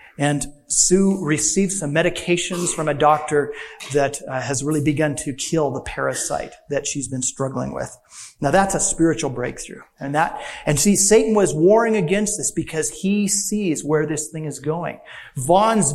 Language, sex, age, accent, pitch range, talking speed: English, male, 40-59, American, 140-185 Hz, 170 wpm